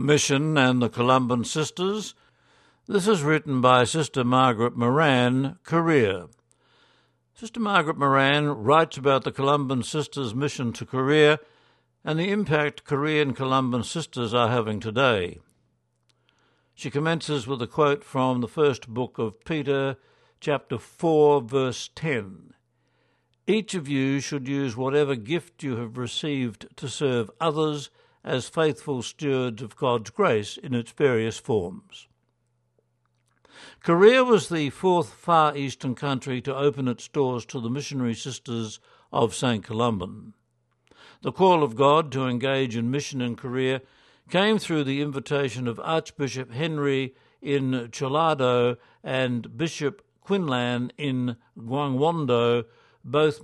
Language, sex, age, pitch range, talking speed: English, male, 60-79, 120-150 Hz, 130 wpm